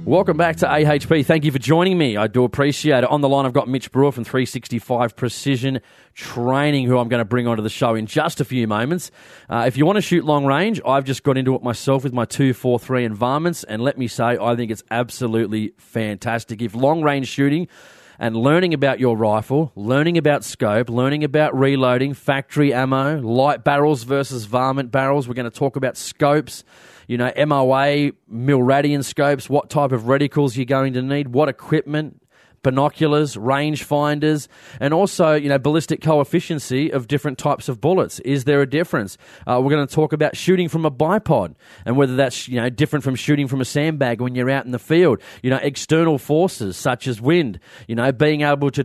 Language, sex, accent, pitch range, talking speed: English, male, Australian, 125-150 Hz, 205 wpm